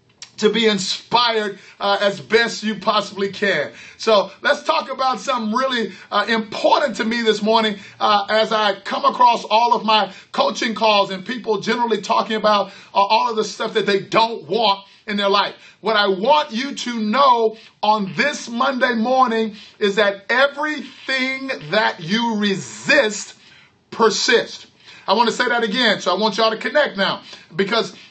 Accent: American